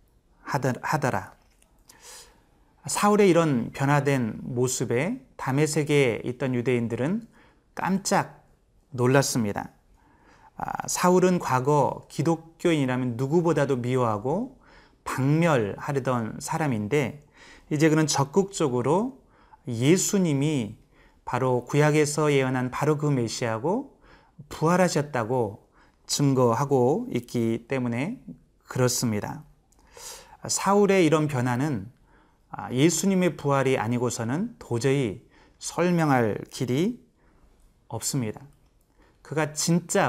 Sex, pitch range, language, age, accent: male, 125-160 Hz, Korean, 30-49, native